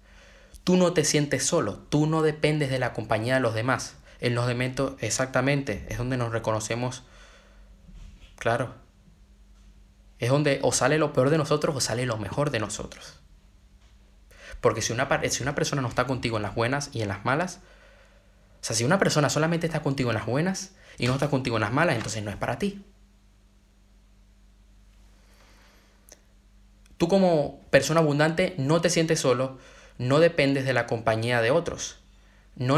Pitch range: 100-145 Hz